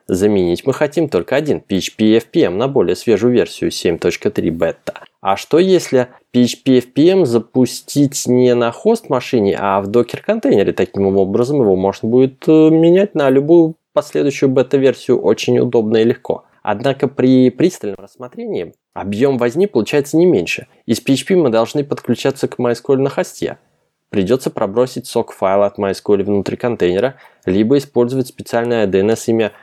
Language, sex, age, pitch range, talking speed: Russian, male, 20-39, 105-135 Hz, 140 wpm